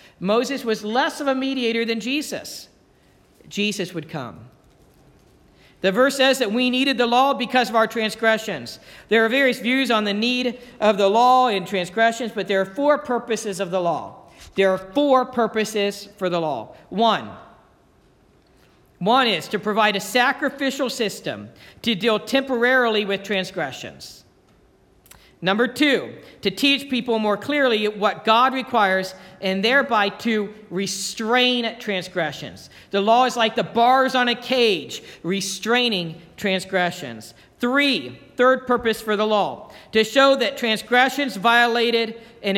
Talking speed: 140 wpm